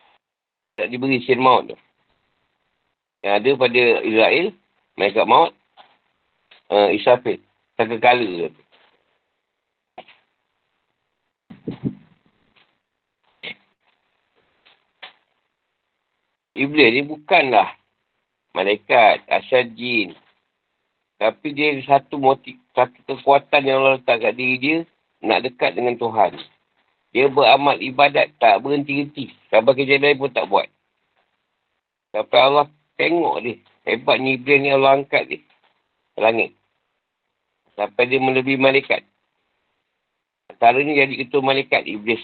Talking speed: 95 wpm